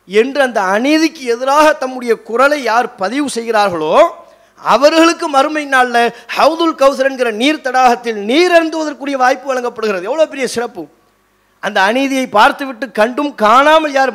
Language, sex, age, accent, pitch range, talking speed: English, male, 30-49, Indian, 215-280 Hz, 165 wpm